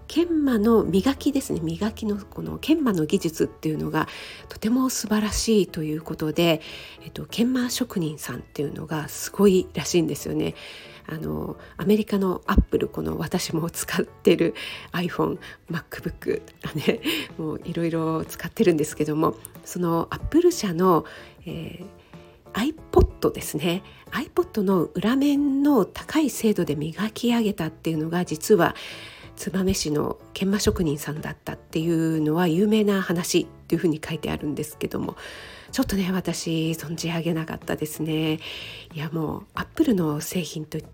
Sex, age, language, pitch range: female, 50-69, Japanese, 155-215 Hz